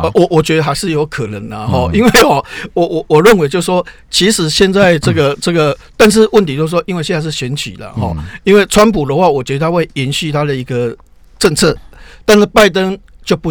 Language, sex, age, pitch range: Chinese, male, 50-69, 135-180 Hz